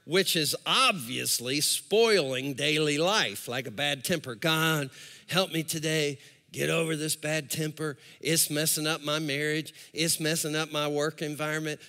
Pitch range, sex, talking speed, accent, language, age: 155-260 Hz, male, 150 wpm, American, English, 50-69